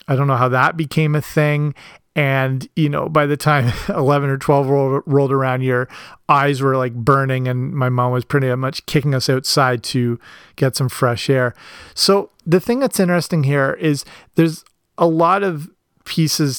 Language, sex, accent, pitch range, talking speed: English, male, American, 135-160 Hz, 180 wpm